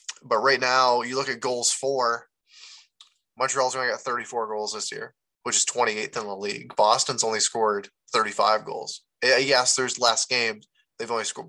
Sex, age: male, 20-39